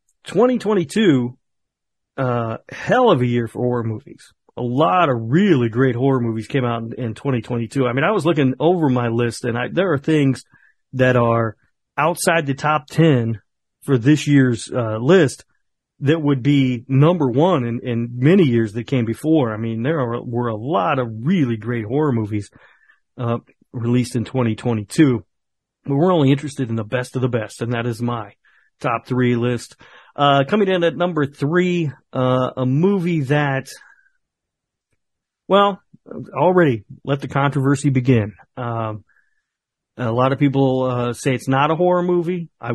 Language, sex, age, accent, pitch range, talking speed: English, male, 40-59, American, 120-150 Hz, 165 wpm